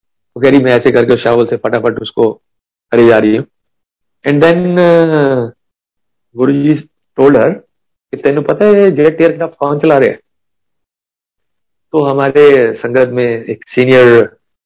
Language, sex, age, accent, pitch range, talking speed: Hindi, male, 50-69, native, 115-155 Hz, 110 wpm